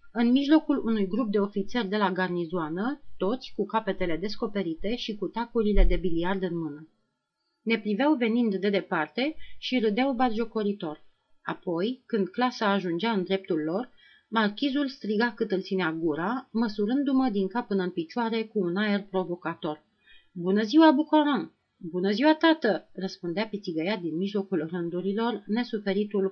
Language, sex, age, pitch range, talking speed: Romanian, female, 30-49, 190-240 Hz, 145 wpm